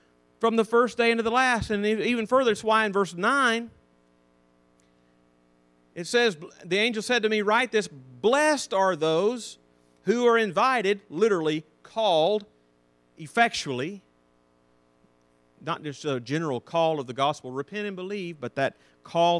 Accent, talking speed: American, 145 wpm